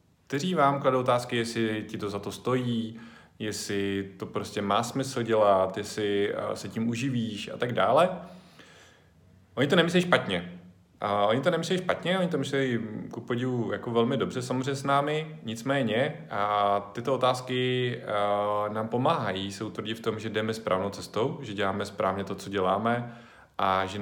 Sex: male